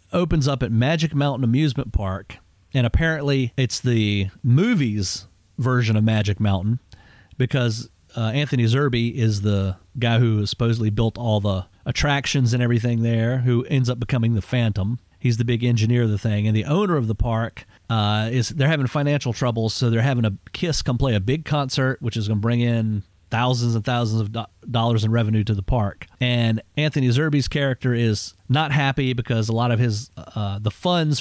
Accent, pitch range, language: American, 110-130 Hz, English